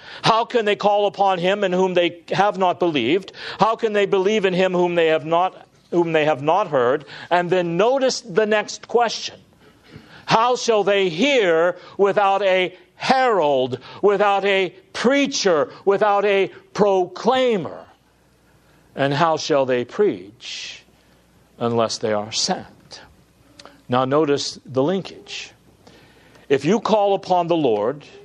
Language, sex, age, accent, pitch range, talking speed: English, male, 60-79, American, 170-215 Hz, 130 wpm